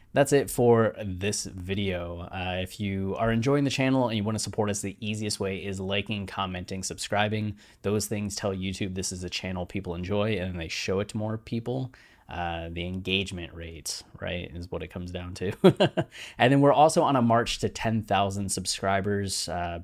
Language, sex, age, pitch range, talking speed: English, male, 20-39, 95-110 Hz, 190 wpm